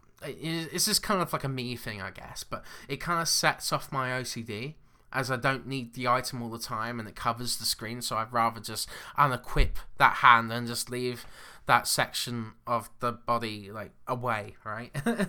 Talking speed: 195 wpm